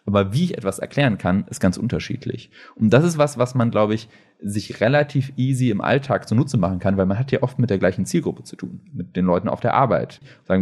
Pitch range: 90-120 Hz